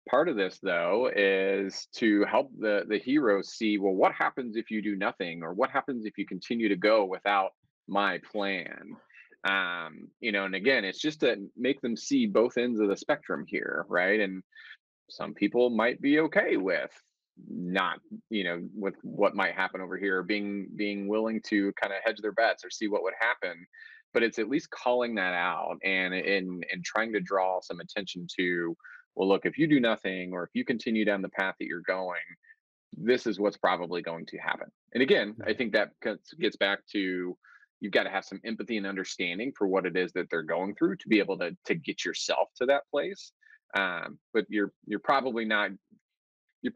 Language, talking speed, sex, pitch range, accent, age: English, 200 wpm, male, 95-125 Hz, American, 20-39